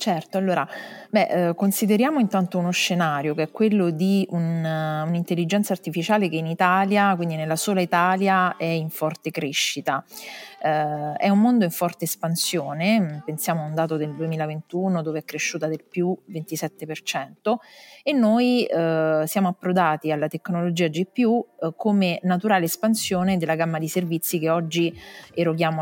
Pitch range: 160-190 Hz